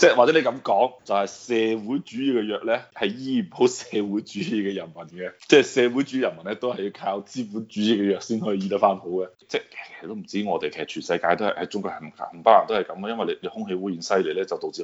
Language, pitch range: Chinese, 90-125 Hz